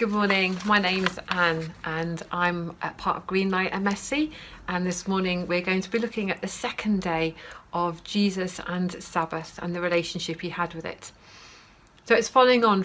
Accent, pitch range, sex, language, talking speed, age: British, 170-195 Hz, female, English, 180 wpm, 40-59